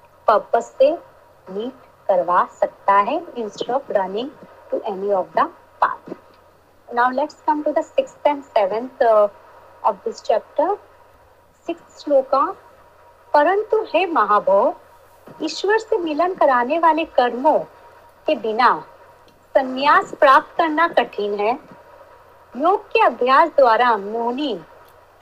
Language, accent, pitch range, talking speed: Hindi, native, 240-345 Hz, 85 wpm